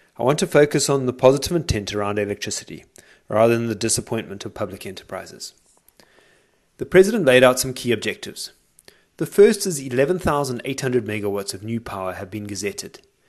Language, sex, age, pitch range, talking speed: English, male, 30-49, 105-140 Hz, 160 wpm